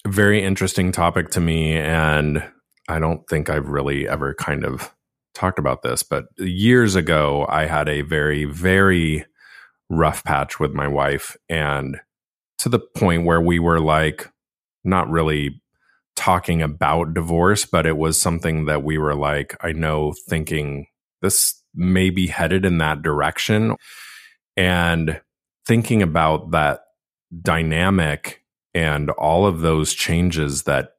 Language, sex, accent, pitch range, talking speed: English, male, American, 75-90 Hz, 140 wpm